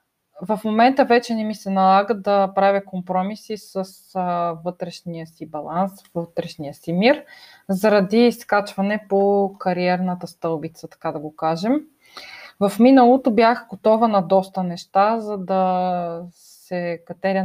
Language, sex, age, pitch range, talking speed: Bulgarian, female, 20-39, 180-235 Hz, 125 wpm